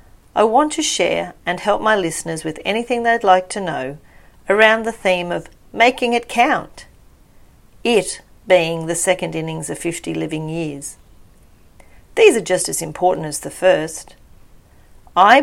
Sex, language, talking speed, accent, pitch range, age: female, English, 150 wpm, Australian, 160-225 Hz, 40-59